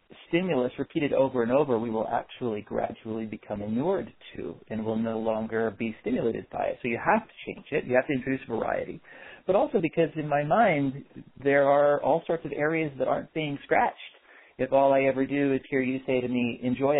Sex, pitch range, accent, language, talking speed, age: male, 115-145 Hz, American, English, 210 wpm, 40-59